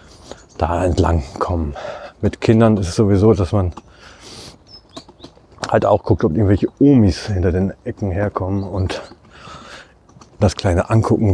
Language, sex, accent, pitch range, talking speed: German, male, German, 95-115 Hz, 125 wpm